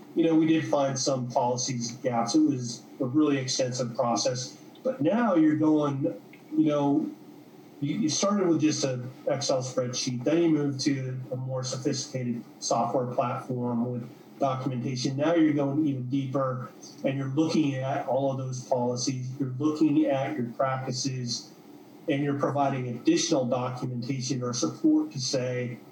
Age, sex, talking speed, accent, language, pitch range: 30-49, male, 155 wpm, American, English, 125-150 Hz